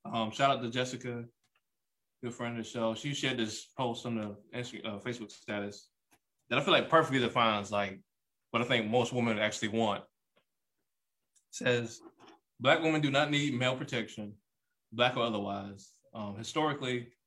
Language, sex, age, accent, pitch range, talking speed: English, male, 20-39, American, 115-135 Hz, 165 wpm